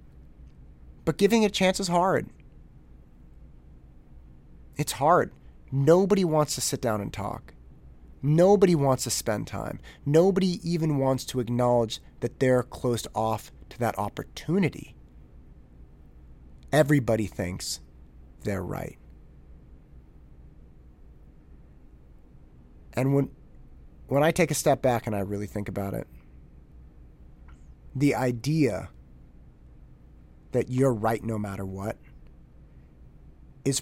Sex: male